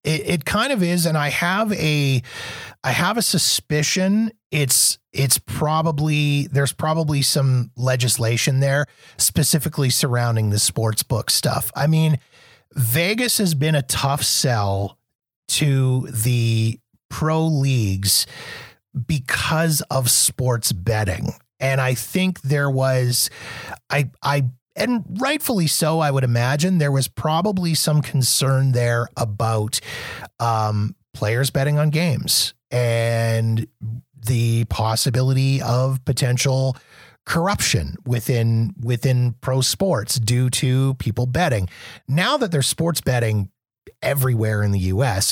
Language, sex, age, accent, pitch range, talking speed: English, male, 30-49, American, 115-150 Hz, 120 wpm